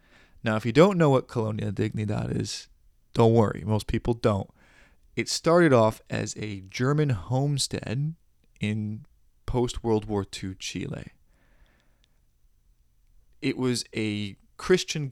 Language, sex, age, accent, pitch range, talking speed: English, male, 20-39, American, 95-125 Hz, 125 wpm